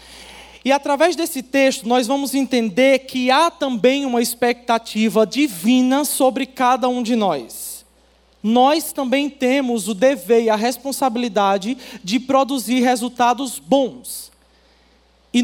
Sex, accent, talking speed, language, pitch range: male, Brazilian, 120 wpm, Portuguese, 220-265 Hz